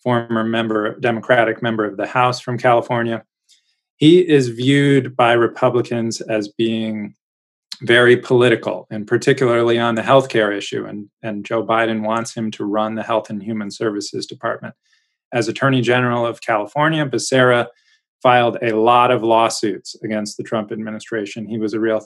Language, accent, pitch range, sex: English, American, 110-125 Hz, male